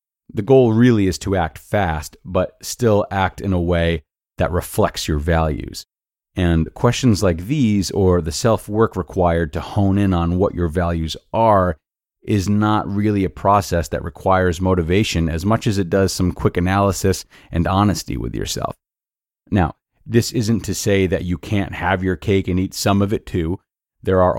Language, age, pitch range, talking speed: English, 30-49, 85-100 Hz, 175 wpm